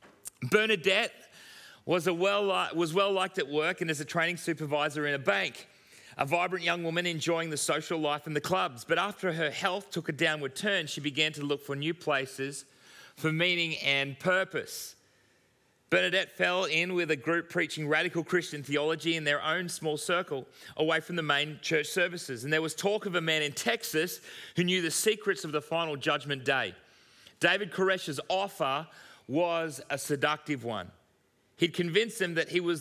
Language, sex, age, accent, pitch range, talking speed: English, male, 30-49, Australian, 145-175 Hz, 180 wpm